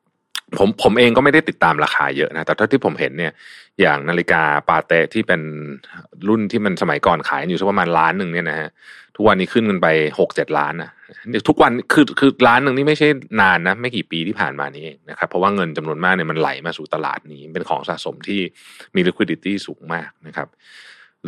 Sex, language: male, Thai